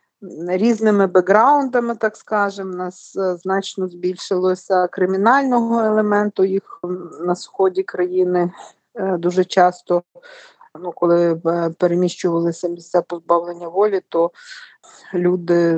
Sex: female